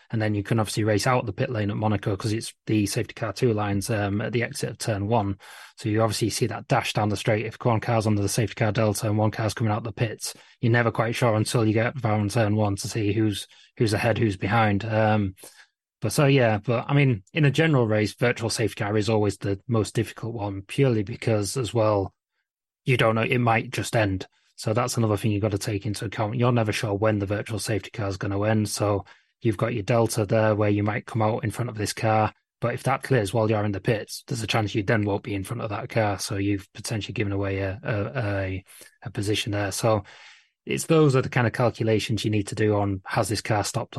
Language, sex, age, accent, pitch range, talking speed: English, male, 20-39, British, 105-115 Hz, 250 wpm